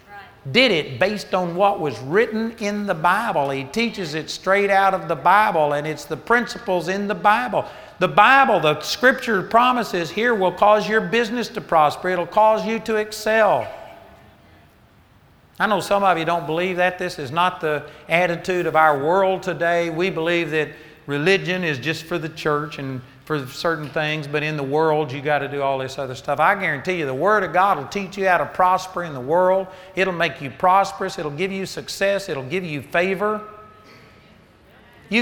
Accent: American